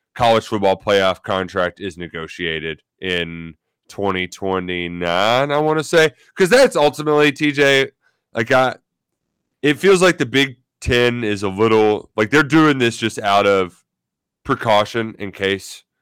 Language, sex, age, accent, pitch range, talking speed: English, male, 20-39, American, 100-135 Hz, 140 wpm